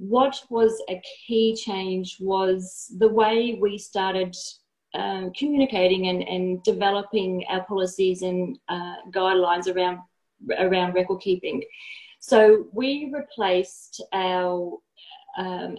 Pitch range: 185-225 Hz